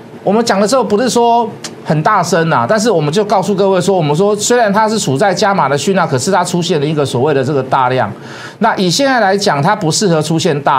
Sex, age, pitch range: male, 50-69, 160-225 Hz